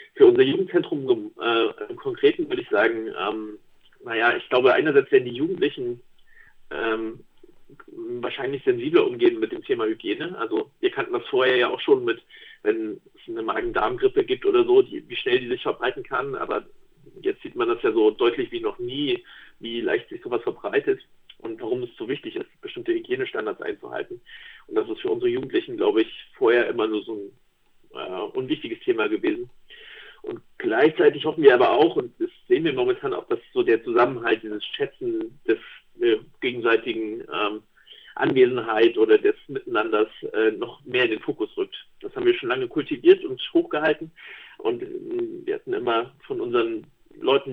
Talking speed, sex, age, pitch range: 175 wpm, male, 50-69, 360-410 Hz